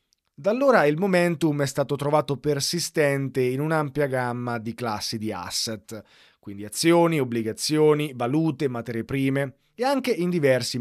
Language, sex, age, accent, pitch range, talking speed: Italian, male, 30-49, native, 115-160 Hz, 140 wpm